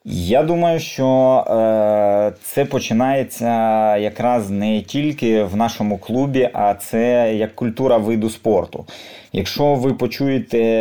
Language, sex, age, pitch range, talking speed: Ukrainian, male, 20-39, 110-125 Hz, 115 wpm